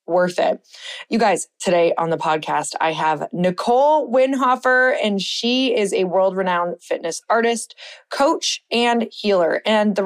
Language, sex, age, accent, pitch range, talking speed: English, female, 20-39, American, 175-225 Hz, 145 wpm